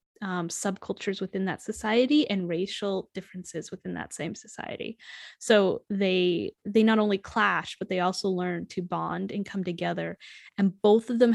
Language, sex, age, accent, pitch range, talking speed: English, female, 10-29, American, 175-210 Hz, 165 wpm